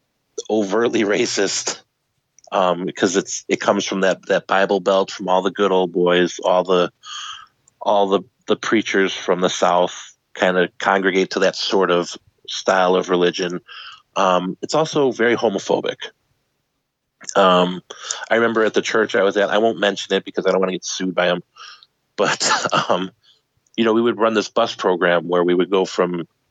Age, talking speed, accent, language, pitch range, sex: 30-49, 180 wpm, American, English, 90-100 Hz, male